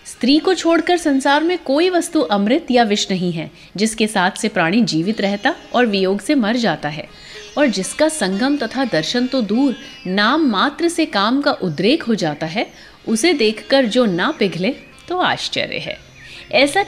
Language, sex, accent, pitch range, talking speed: Hindi, female, native, 190-285 Hz, 175 wpm